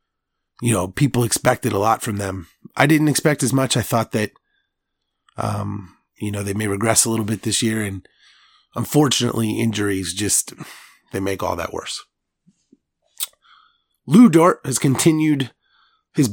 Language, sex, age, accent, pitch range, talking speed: English, male, 30-49, American, 110-140 Hz, 150 wpm